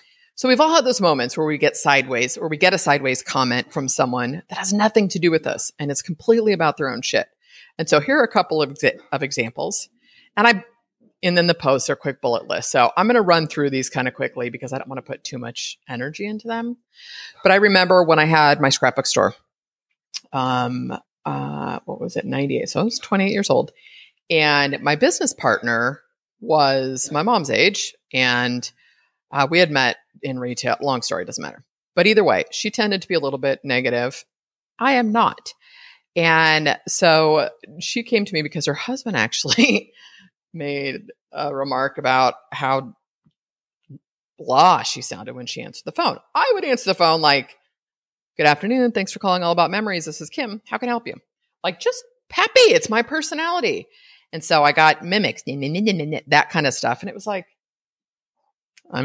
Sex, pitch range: female, 135-220 Hz